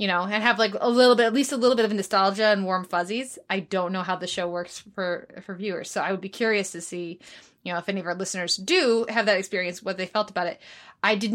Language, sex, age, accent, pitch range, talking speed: English, female, 20-39, American, 190-240 Hz, 280 wpm